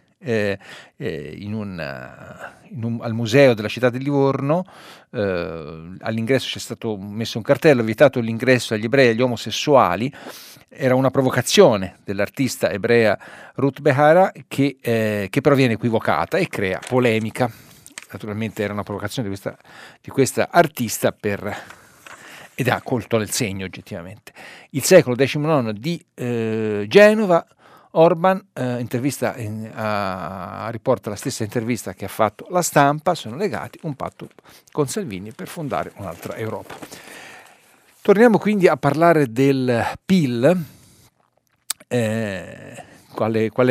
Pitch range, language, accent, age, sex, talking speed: 105-130 Hz, Italian, native, 50-69, male, 135 wpm